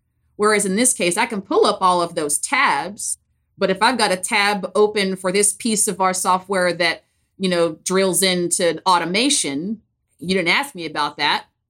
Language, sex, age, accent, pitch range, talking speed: English, female, 20-39, American, 175-230 Hz, 190 wpm